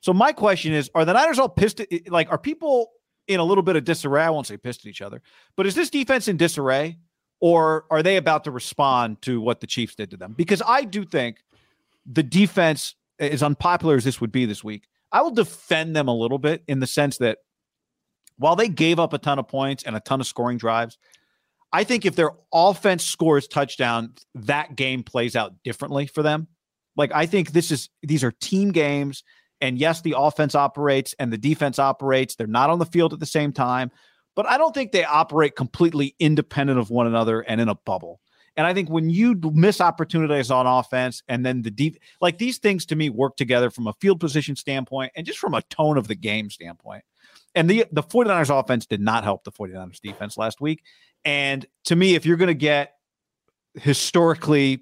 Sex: male